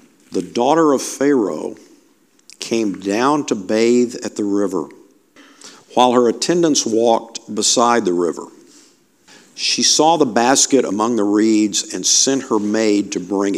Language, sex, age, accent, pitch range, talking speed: English, male, 50-69, American, 105-140 Hz, 135 wpm